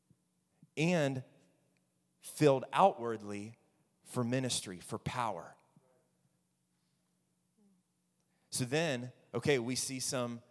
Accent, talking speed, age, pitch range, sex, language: American, 75 wpm, 30-49, 125-165 Hz, male, English